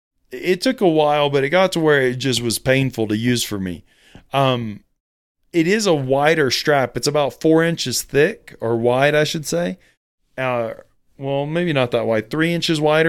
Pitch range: 115-155 Hz